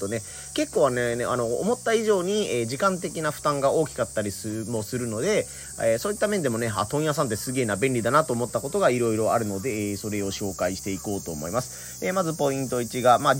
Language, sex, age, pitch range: Japanese, male, 30-49, 105-160 Hz